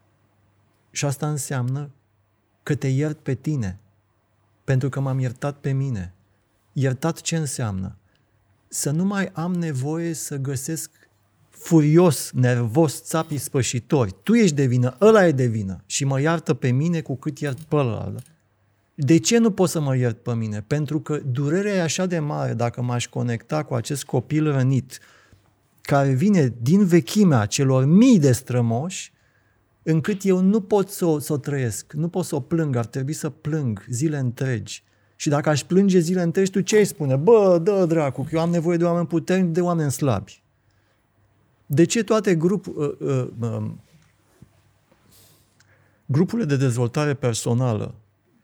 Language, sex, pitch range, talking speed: Romanian, male, 115-160 Hz, 160 wpm